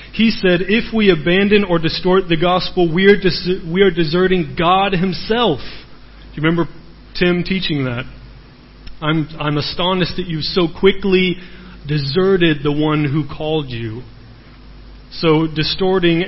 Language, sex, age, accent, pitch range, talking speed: English, male, 30-49, American, 145-185 Hz, 140 wpm